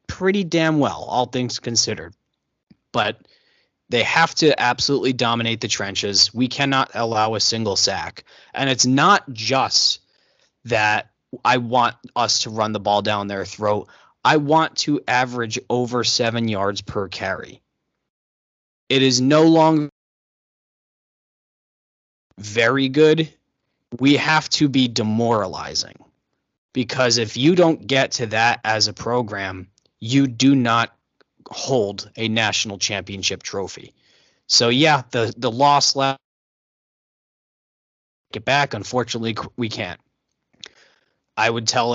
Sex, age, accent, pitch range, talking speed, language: male, 20-39, American, 110-135 Hz, 125 wpm, English